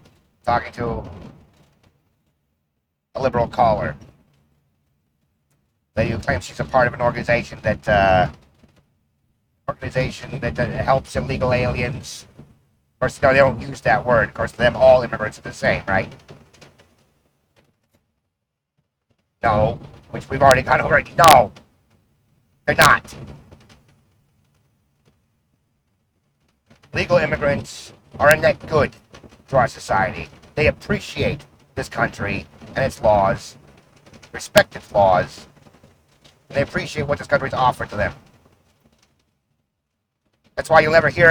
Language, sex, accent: English, male, American